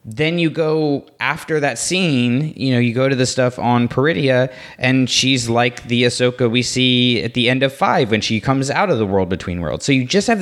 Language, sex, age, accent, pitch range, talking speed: English, male, 20-39, American, 100-130 Hz, 230 wpm